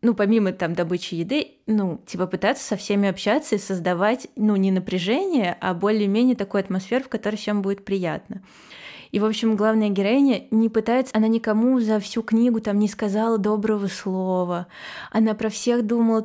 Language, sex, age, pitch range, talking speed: Russian, female, 20-39, 190-220 Hz, 170 wpm